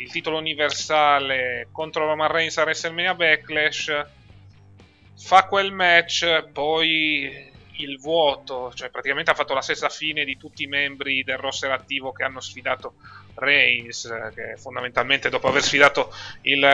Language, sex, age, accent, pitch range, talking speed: Italian, male, 30-49, native, 130-155 Hz, 140 wpm